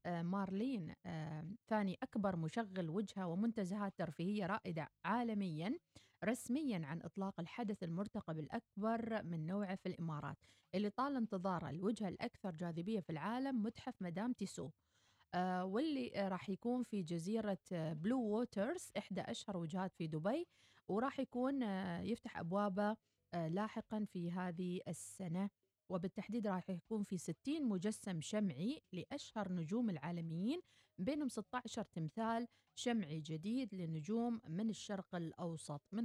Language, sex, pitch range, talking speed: Arabic, female, 175-230 Hz, 130 wpm